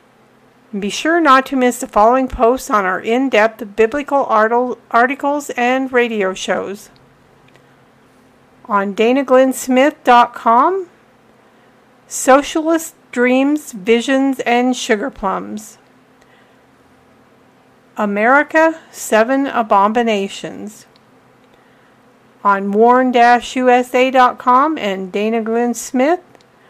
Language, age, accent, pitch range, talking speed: English, 50-69, American, 215-260 Hz, 75 wpm